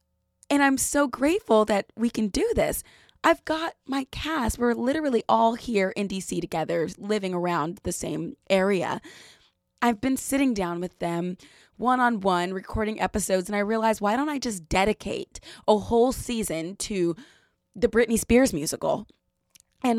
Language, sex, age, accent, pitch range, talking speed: English, female, 20-39, American, 190-255 Hz, 160 wpm